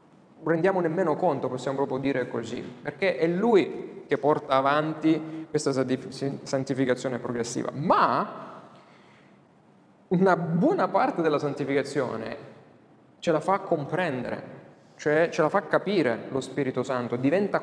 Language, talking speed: Italian, 120 wpm